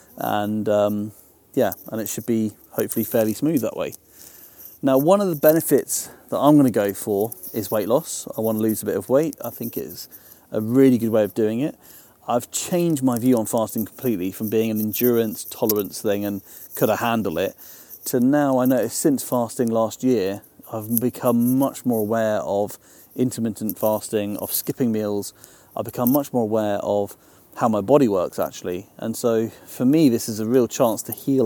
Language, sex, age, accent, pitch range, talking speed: English, male, 40-59, British, 105-130 Hz, 195 wpm